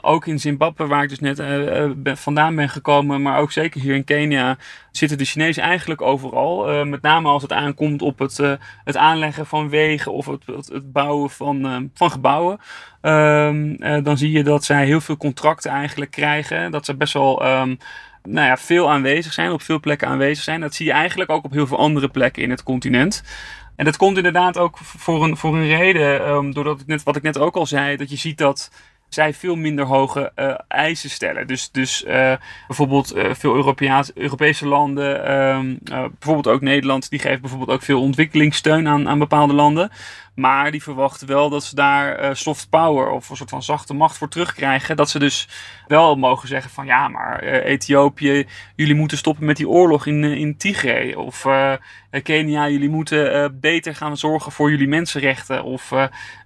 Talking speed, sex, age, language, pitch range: 190 wpm, male, 30-49, Dutch, 140-155 Hz